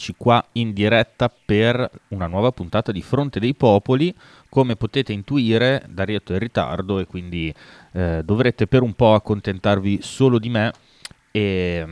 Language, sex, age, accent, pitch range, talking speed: Italian, male, 30-49, native, 90-115 Hz, 150 wpm